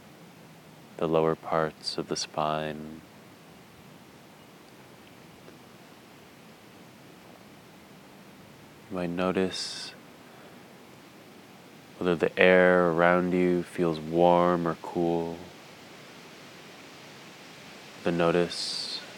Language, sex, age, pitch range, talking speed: English, male, 20-39, 80-90 Hz, 65 wpm